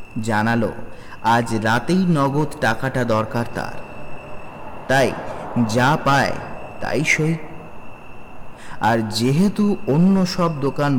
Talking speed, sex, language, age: 95 wpm, male, Bengali, 30-49